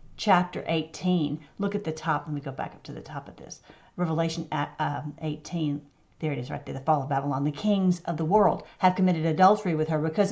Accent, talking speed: American, 220 wpm